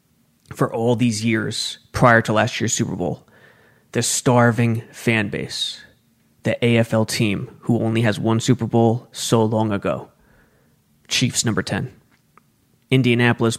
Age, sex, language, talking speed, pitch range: 20-39, male, English, 130 wpm, 110-130 Hz